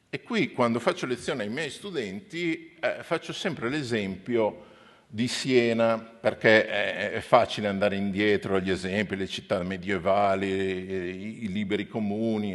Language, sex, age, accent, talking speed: Italian, male, 50-69, native, 130 wpm